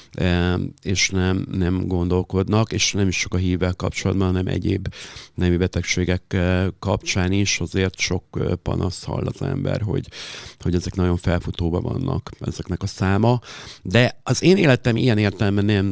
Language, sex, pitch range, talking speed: Hungarian, male, 90-100 Hz, 145 wpm